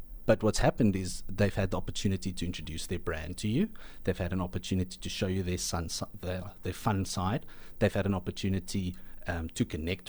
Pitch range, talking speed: 90-110 Hz, 210 wpm